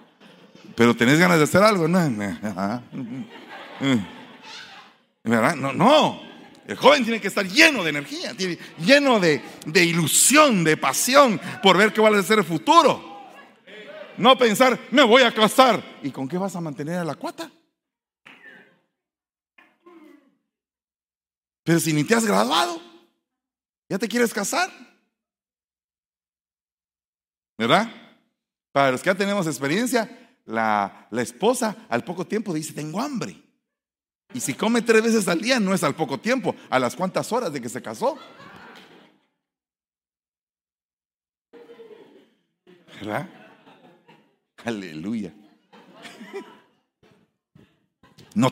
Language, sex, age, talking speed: Spanish, male, 50-69, 125 wpm